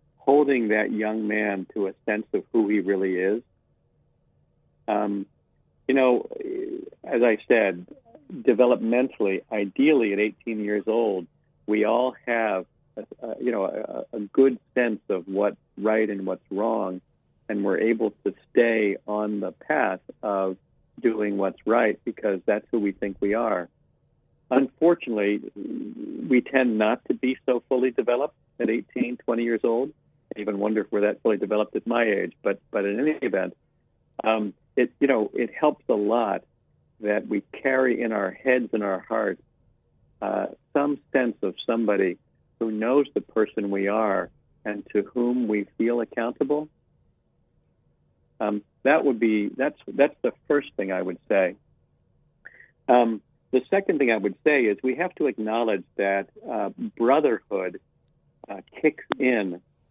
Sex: male